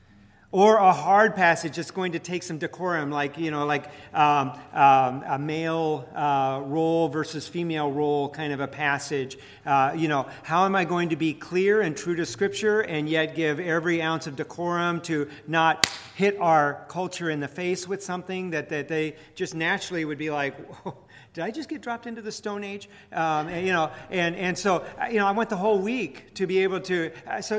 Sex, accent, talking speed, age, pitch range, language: male, American, 205 wpm, 40-59, 145-180 Hz, English